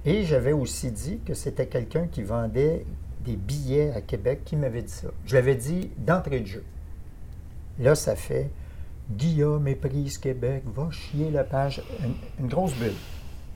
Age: 50-69